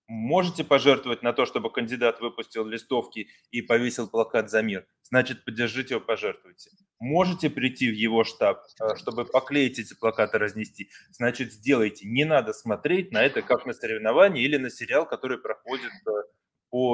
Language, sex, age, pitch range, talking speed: Russian, male, 20-39, 115-165 Hz, 150 wpm